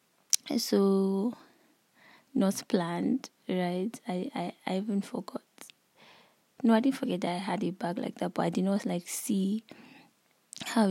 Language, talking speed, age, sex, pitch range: English, 150 wpm, 20-39, female, 180-220 Hz